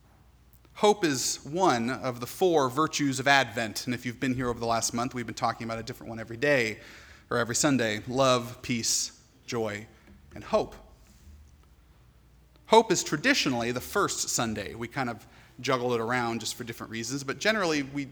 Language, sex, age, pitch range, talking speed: English, male, 30-49, 110-150 Hz, 180 wpm